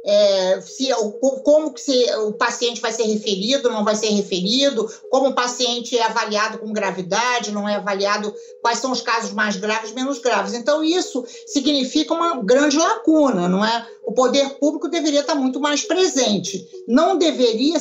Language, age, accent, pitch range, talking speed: Portuguese, 50-69, Brazilian, 230-310 Hz, 155 wpm